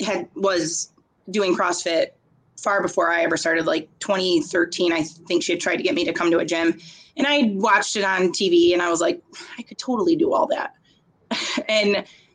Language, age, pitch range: English, 20-39, 170-225 Hz